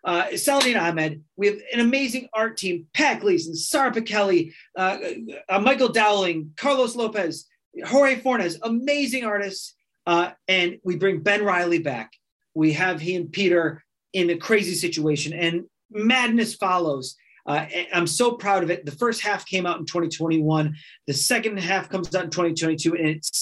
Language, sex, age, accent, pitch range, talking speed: English, male, 30-49, American, 155-200 Hz, 160 wpm